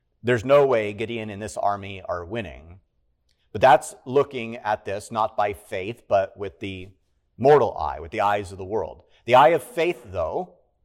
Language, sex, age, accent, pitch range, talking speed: English, male, 40-59, American, 100-135 Hz, 185 wpm